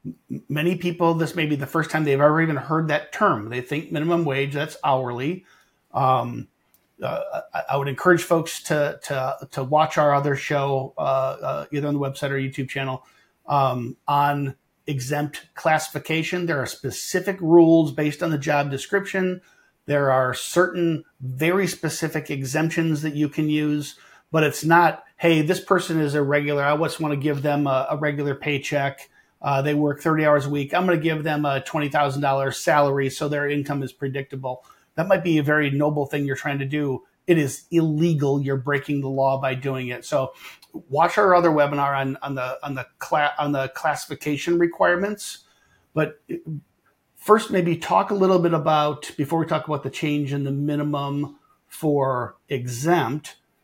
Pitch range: 140-165 Hz